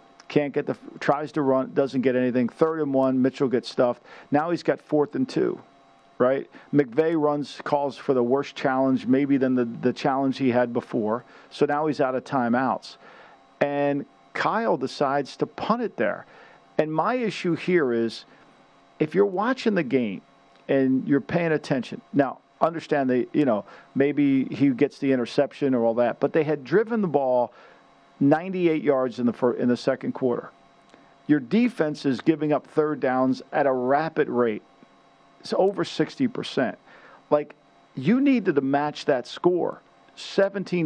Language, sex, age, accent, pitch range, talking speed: English, male, 50-69, American, 130-165 Hz, 165 wpm